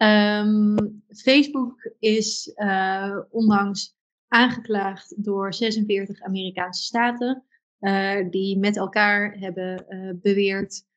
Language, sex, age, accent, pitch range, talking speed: Dutch, female, 20-39, Dutch, 190-215 Hz, 95 wpm